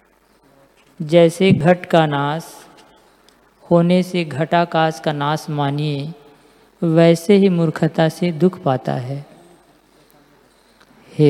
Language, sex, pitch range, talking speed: Hindi, female, 150-180 Hz, 95 wpm